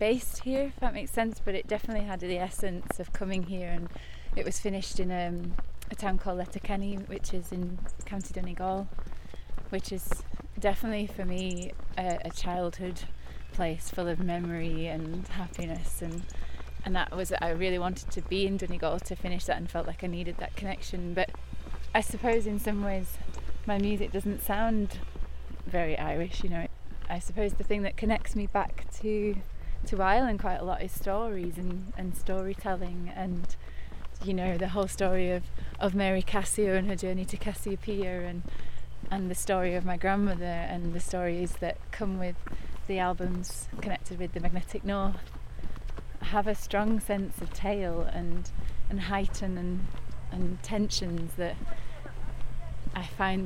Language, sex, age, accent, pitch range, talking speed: English, female, 20-39, British, 175-195 Hz, 165 wpm